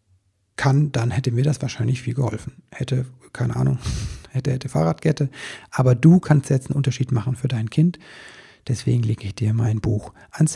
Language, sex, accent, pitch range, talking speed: German, male, German, 115-145 Hz, 175 wpm